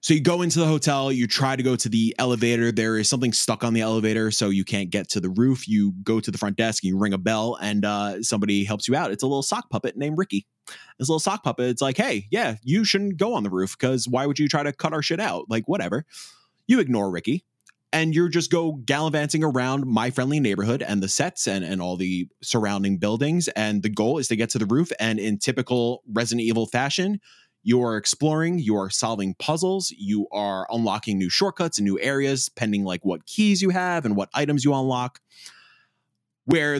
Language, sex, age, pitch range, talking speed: English, male, 20-39, 110-150 Hz, 225 wpm